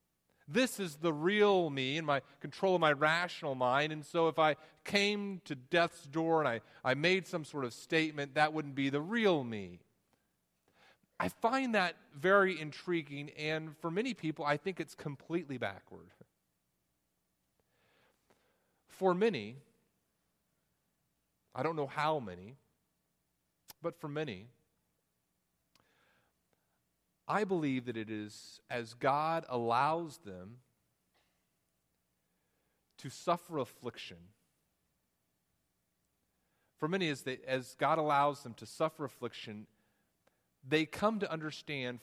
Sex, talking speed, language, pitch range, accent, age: male, 120 wpm, English, 110-165 Hz, American, 40-59